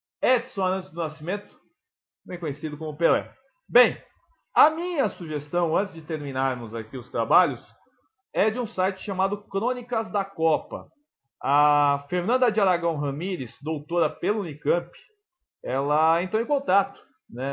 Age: 40-59